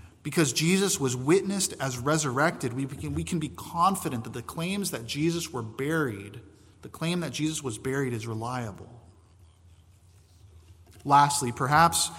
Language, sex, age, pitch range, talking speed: English, male, 20-39, 110-150 Hz, 140 wpm